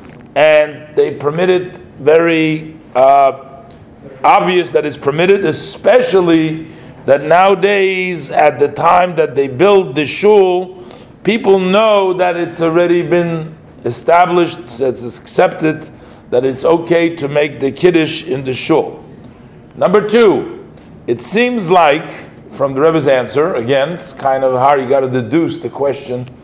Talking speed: 140 wpm